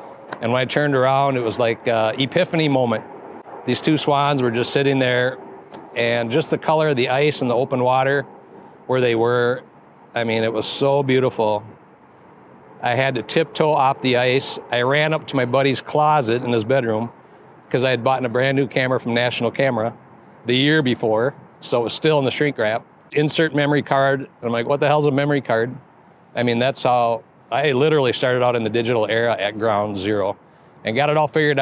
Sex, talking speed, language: male, 205 wpm, English